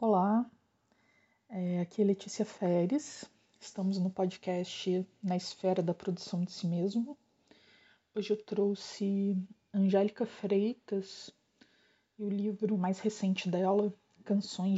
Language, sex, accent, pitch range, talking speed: Portuguese, female, Brazilian, 185-225 Hz, 110 wpm